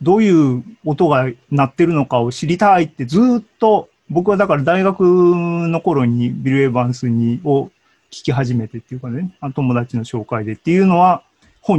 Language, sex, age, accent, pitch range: Japanese, male, 40-59, native, 125-180 Hz